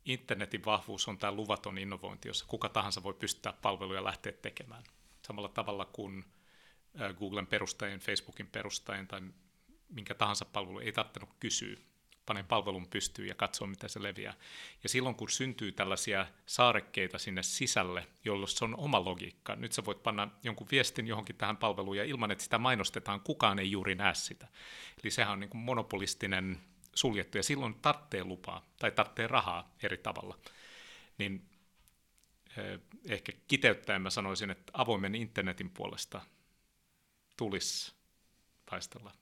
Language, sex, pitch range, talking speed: Finnish, male, 95-115 Hz, 145 wpm